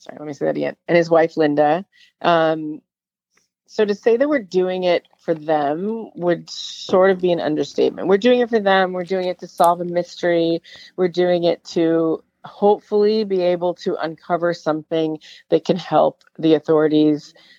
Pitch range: 155-180 Hz